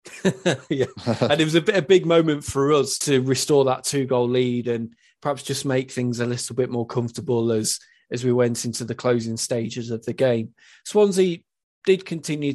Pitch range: 125-145 Hz